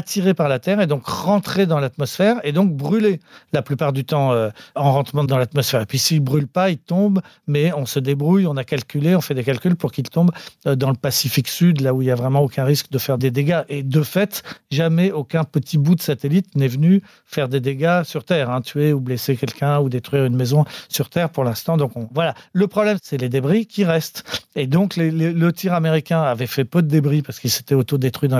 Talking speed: 245 wpm